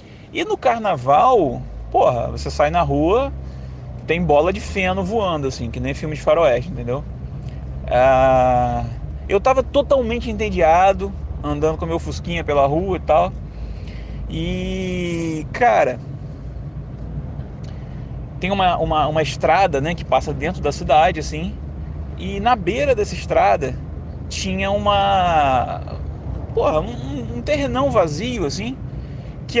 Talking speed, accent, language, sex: 125 wpm, Brazilian, Portuguese, male